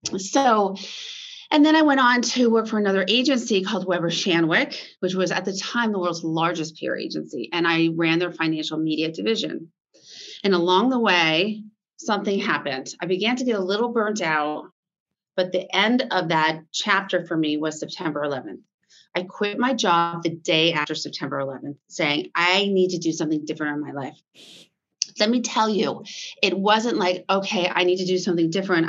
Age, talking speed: 30-49, 185 wpm